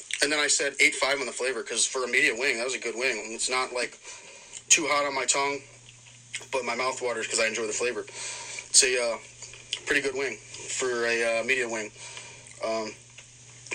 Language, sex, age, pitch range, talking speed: English, male, 30-49, 120-135 Hz, 205 wpm